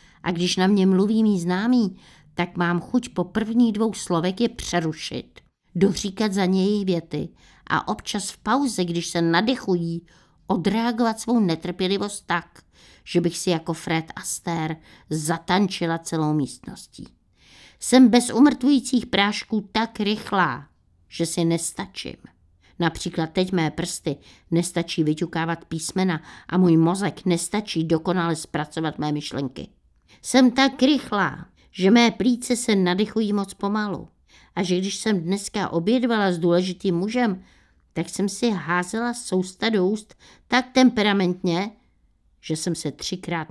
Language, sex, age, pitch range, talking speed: Czech, female, 50-69, 165-205 Hz, 130 wpm